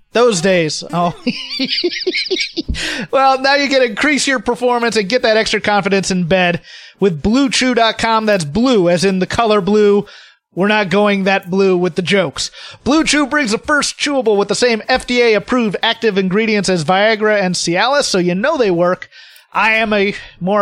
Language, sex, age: English, male, 30-49